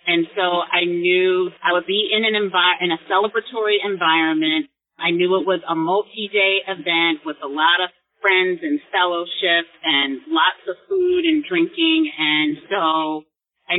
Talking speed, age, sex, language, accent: 160 wpm, 30-49, female, English, American